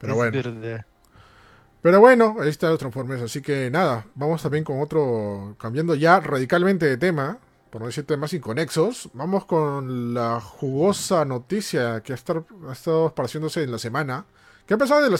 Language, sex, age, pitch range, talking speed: Spanish, male, 30-49, 115-165 Hz, 175 wpm